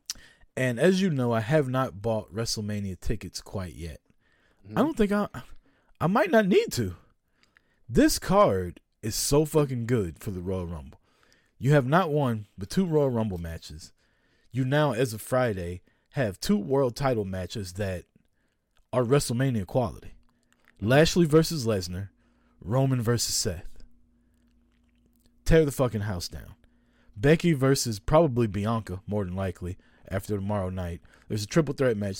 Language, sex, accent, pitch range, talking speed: English, male, American, 95-140 Hz, 150 wpm